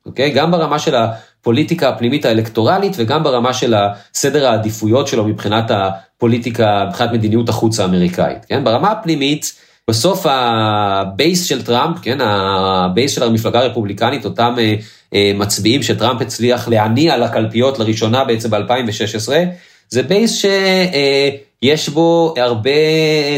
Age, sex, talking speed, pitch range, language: 30-49, male, 130 wpm, 110-150 Hz, Hebrew